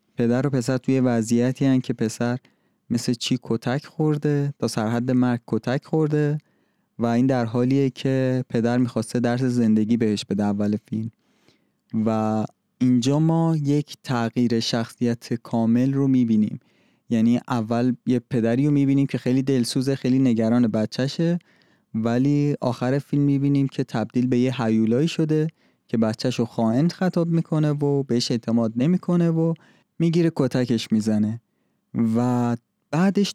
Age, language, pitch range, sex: 20-39, Persian, 115-145 Hz, male